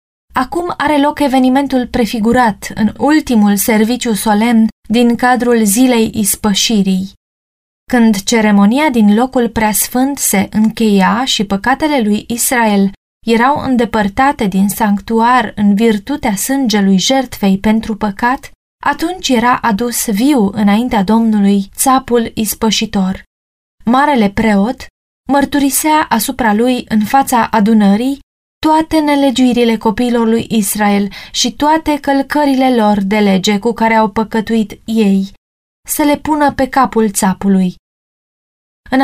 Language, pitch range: Romanian, 210-255 Hz